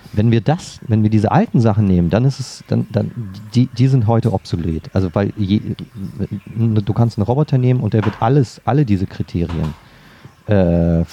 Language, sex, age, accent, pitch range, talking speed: German, male, 40-59, German, 90-115 Hz, 190 wpm